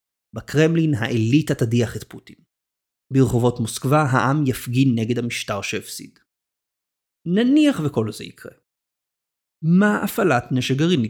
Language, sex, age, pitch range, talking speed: Hebrew, male, 30-49, 115-150 Hz, 110 wpm